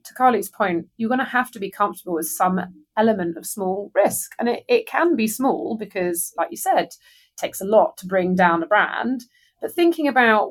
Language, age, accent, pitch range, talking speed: English, 30-49, British, 185-260 Hz, 215 wpm